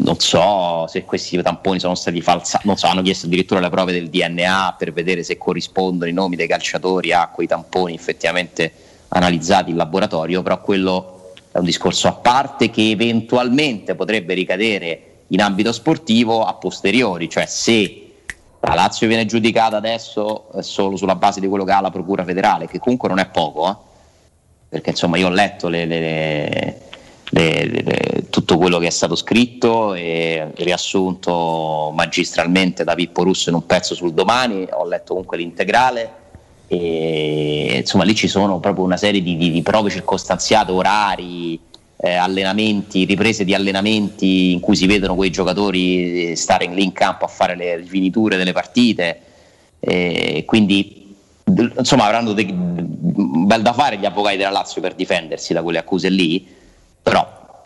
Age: 30-49